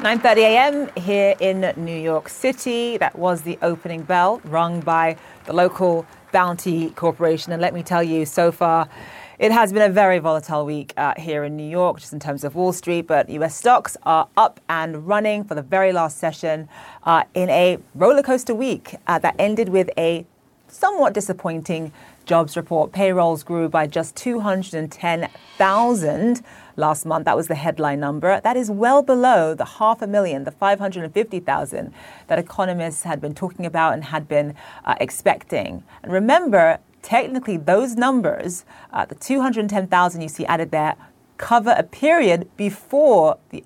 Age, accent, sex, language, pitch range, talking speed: 30-49, British, female, English, 160-215 Hz, 165 wpm